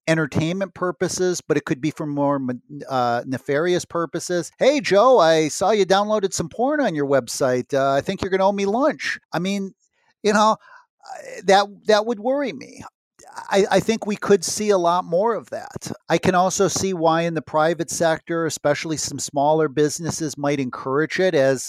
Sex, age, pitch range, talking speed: male, 50-69, 145-190 Hz, 190 wpm